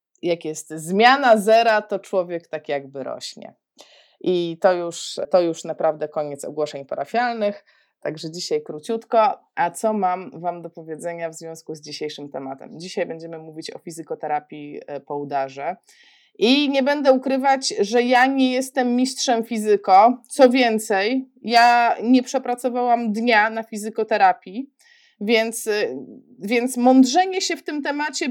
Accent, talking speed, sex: native, 135 wpm, female